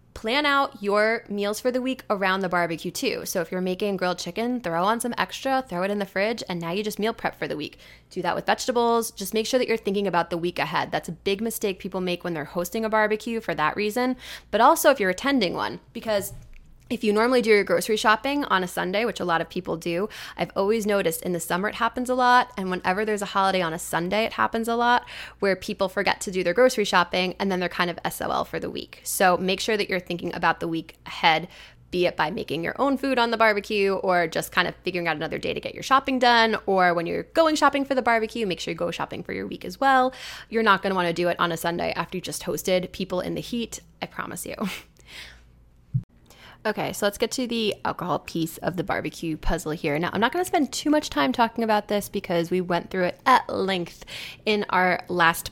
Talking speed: 250 wpm